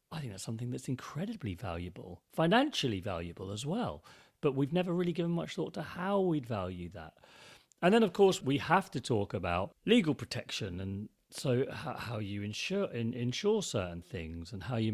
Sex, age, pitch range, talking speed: male, 40-59, 110-155 Hz, 185 wpm